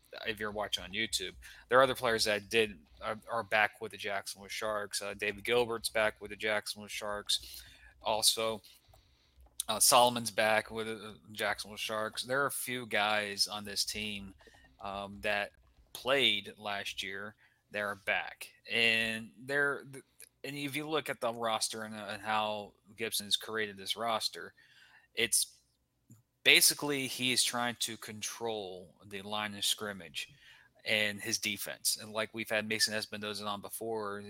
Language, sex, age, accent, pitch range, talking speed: English, male, 20-39, American, 100-115 Hz, 155 wpm